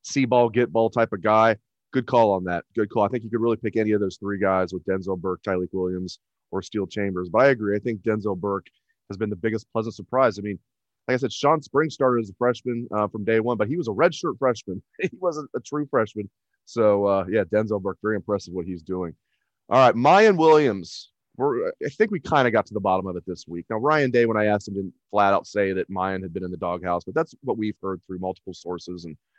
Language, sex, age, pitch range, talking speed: English, male, 30-49, 100-130 Hz, 255 wpm